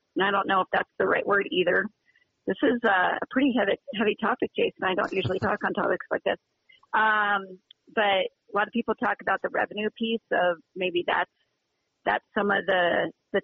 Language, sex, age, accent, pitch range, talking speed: English, female, 40-59, American, 175-215 Hz, 200 wpm